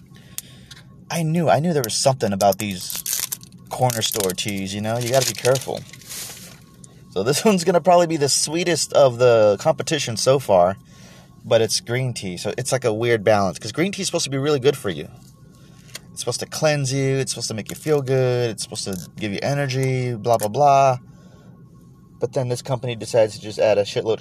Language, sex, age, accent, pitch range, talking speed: English, male, 30-49, American, 105-145 Hz, 210 wpm